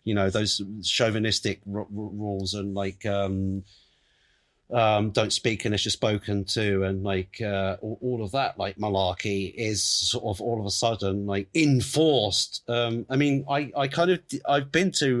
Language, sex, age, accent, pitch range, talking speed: English, male, 40-59, British, 95-115 Hz, 180 wpm